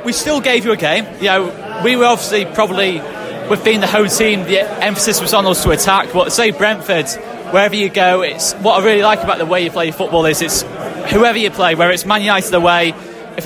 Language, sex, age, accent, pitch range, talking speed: English, male, 20-39, British, 175-215 Hz, 235 wpm